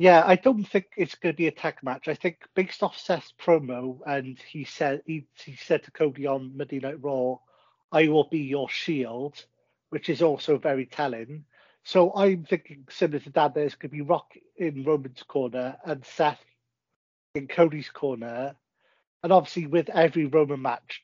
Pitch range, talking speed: 135-165 Hz, 175 wpm